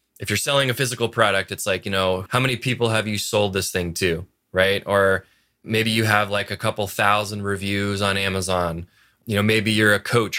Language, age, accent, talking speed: English, 20-39, American, 215 wpm